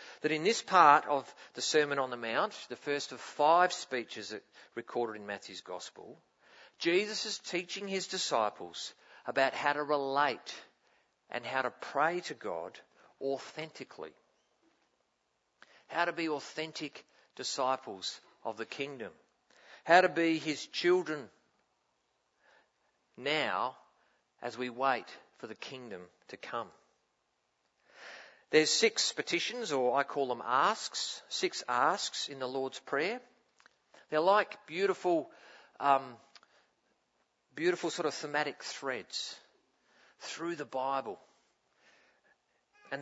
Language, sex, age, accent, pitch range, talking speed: English, male, 50-69, Australian, 130-175 Hz, 115 wpm